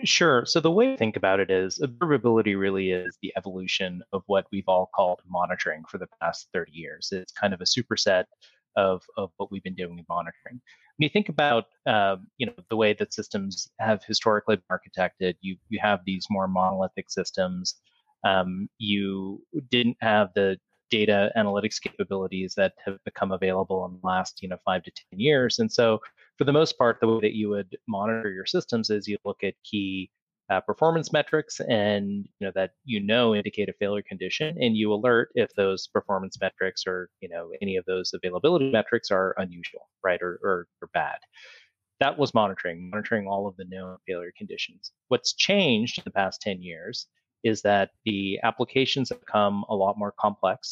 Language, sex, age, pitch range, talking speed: English, male, 30-49, 95-120 Hz, 190 wpm